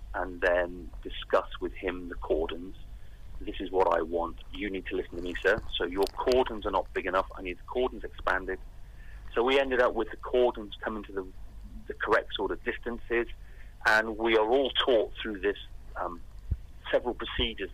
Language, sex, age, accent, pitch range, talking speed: English, male, 40-59, British, 90-105 Hz, 190 wpm